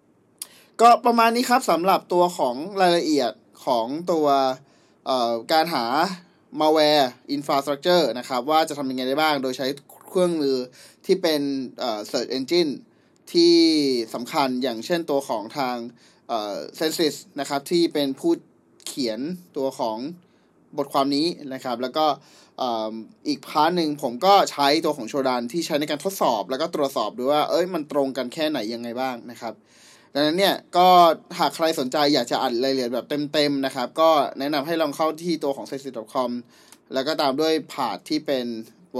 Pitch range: 130-175 Hz